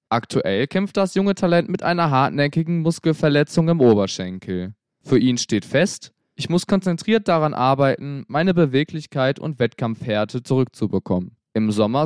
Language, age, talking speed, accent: German, 20-39, 135 wpm, German